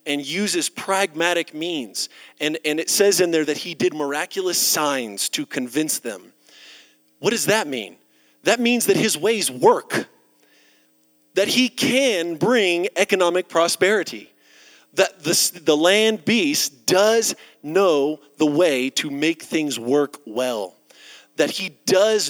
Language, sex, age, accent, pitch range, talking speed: English, male, 40-59, American, 130-185 Hz, 135 wpm